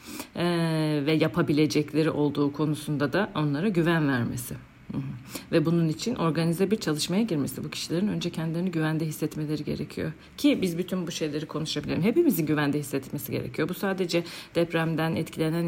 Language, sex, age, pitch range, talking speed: Turkish, female, 50-69, 145-170 Hz, 140 wpm